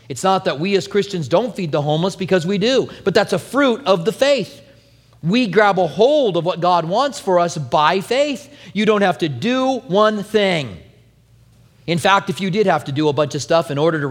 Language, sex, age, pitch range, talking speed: English, male, 40-59, 150-205 Hz, 230 wpm